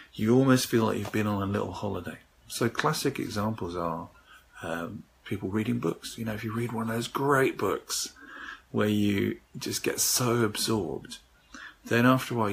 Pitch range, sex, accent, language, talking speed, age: 95-115 Hz, male, British, English, 180 wpm, 50-69